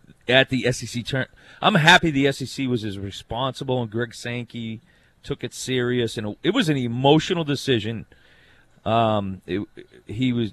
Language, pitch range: English, 110-140 Hz